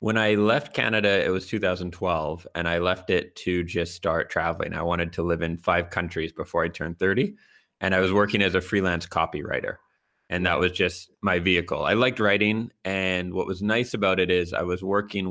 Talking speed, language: 210 wpm, English